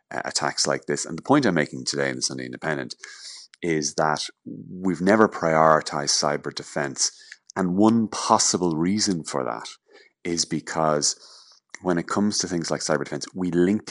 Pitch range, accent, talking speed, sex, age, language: 75-85 Hz, Irish, 165 wpm, male, 30-49, English